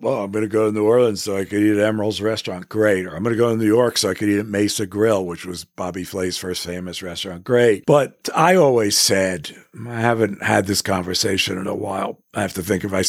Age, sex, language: 50-69, male, English